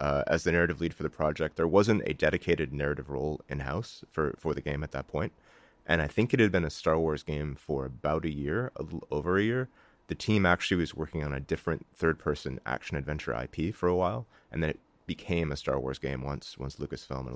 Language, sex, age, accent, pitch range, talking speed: English, male, 30-49, American, 75-90 Hz, 230 wpm